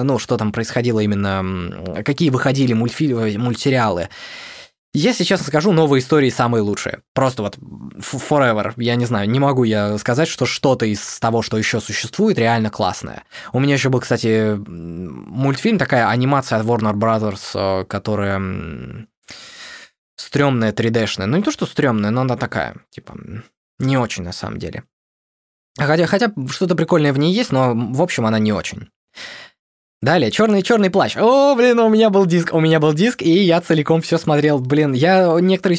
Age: 20-39